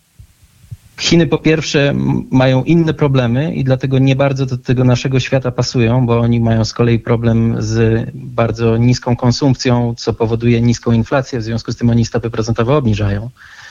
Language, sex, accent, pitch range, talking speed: Polish, male, native, 115-125 Hz, 160 wpm